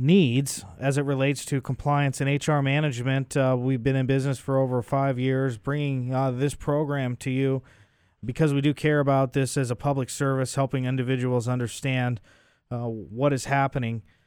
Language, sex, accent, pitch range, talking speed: English, male, American, 120-140 Hz, 175 wpm